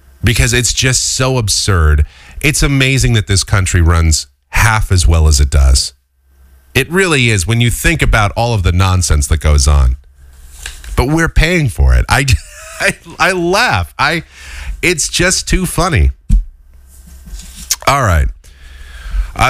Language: English